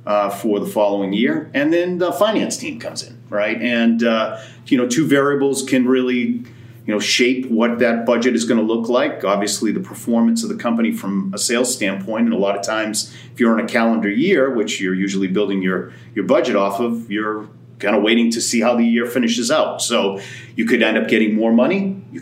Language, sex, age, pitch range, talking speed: English, male, 40-59, 110-130 Hz, 220 wpm